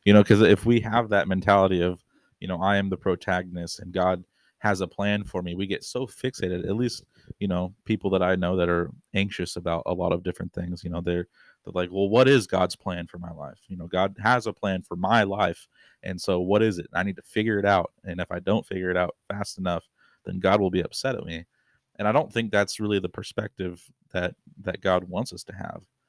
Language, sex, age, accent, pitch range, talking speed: English, male, 30-49, American, 90-105 Hz, 245 wpm